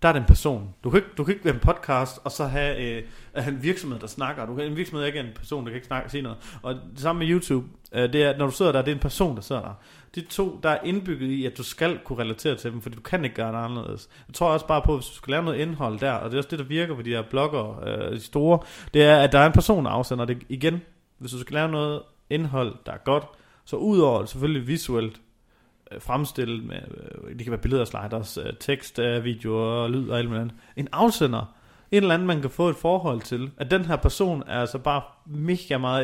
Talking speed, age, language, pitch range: 265 wpm, 30-49, Danish, 120-150 Hz